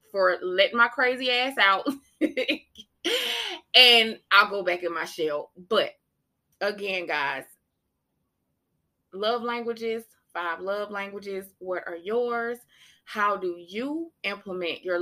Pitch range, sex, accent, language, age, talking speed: 180-230 Hz, female, American, English, 20-39, 115 wpm